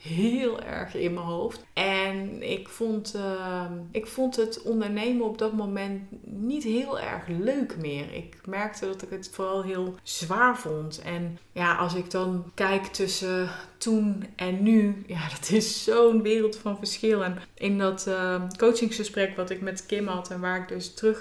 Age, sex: 20-39, female